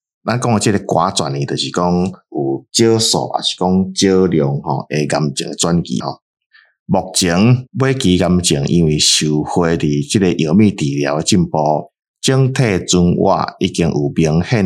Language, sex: Chinese, male